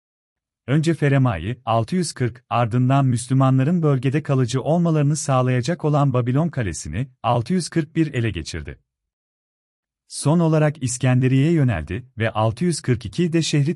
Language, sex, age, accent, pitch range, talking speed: Turkish, male, 40-59, native, 115-150 Hz, 95 wpm